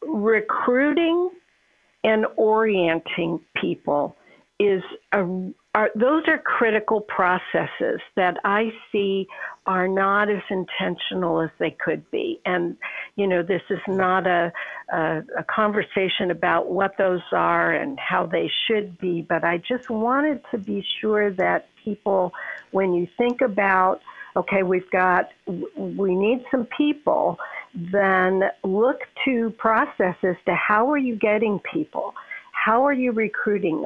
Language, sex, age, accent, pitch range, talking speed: English, female, 60-79, American, 185-230 Hz, 135 wpm